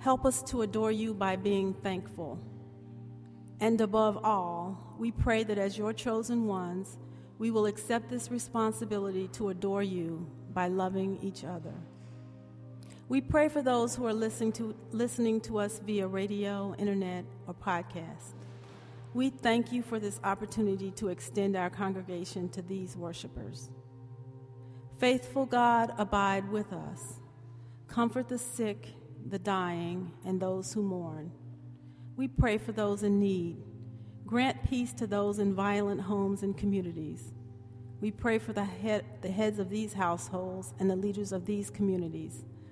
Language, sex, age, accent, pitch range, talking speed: English, female, 40-59, American, 150-215 Hz, 145 wpm